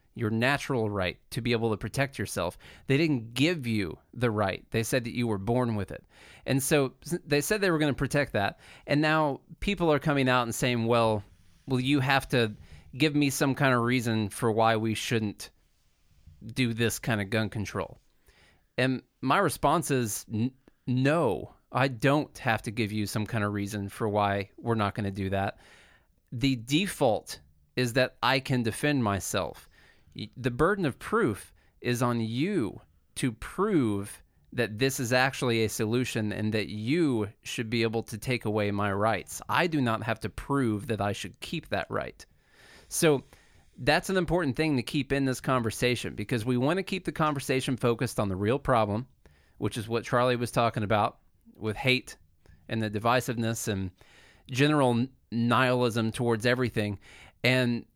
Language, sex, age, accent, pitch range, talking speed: English, male, 30-49, American, 105-135 Hz, 175 wpm